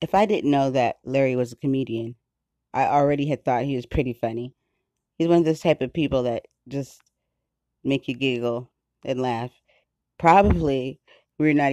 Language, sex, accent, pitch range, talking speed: English, female, American, 120-140 Hz, 180 wpm